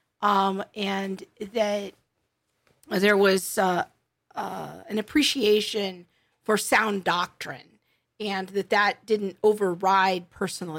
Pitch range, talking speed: 190-225 Hz, 100 wpm